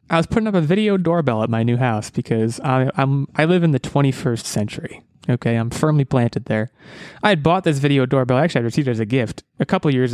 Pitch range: 120-160 Hz